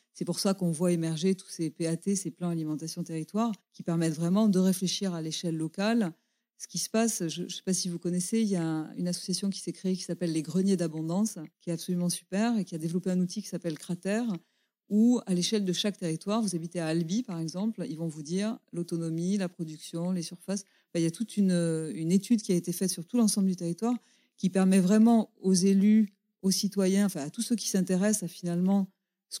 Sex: female